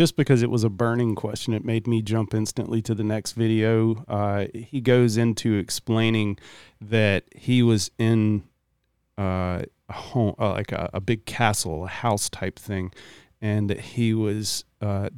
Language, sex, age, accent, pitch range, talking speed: English, male, 40-59, American, 105-120 Hz, 170 wpm